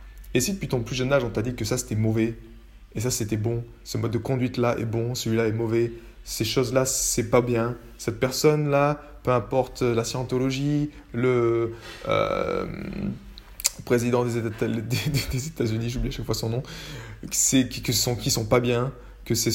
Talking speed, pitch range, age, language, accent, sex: 180 wpm, 110-140 Hz, 20-39, French, French, male